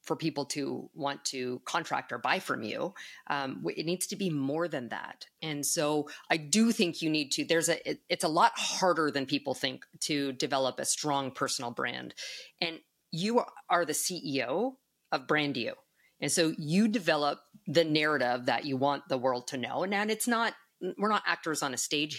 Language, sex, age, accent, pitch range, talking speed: English, female, 40-59, American, 145-190 Hz, 190 wpm